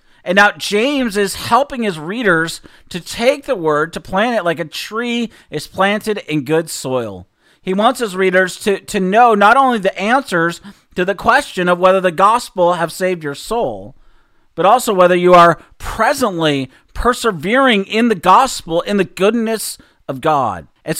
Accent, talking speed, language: American, 170 wpm, English